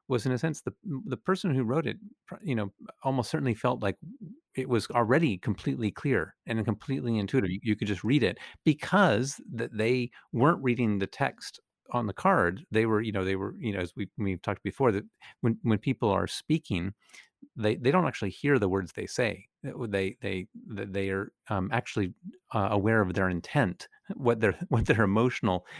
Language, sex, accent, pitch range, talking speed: English, male, American, 100-130 Hz, 195 wpm